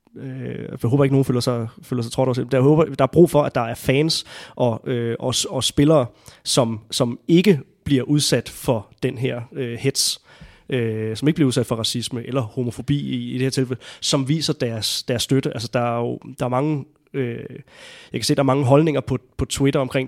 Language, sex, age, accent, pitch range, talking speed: Danish, male, 30-49, native, 125-150 Hz, 180 wpm